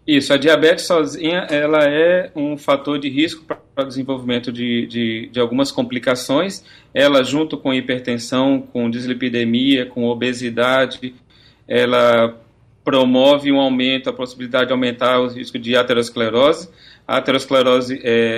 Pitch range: 120-145 Hz